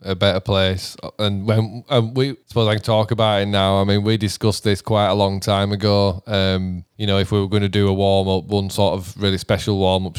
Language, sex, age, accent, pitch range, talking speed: English, male, 20-39, British, 95-110 Hz, 255 wpm